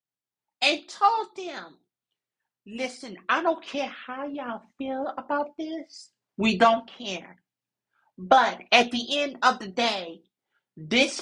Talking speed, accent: 125 wpm, American